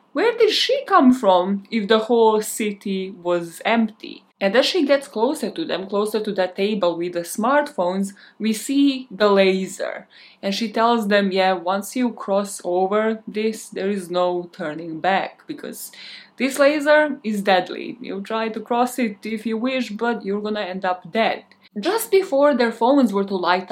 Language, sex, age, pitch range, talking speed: English, female, 20-39, 185-240 Hz, 175 wpm